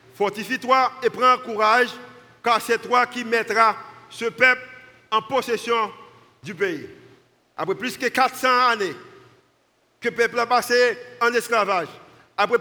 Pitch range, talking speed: 225-260 Hz, 135 wpm